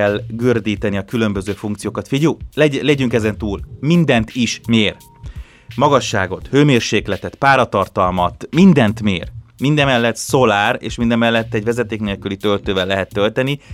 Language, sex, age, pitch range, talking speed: Hungarian, male, 30-49, 100-120 Hz, 120 wpm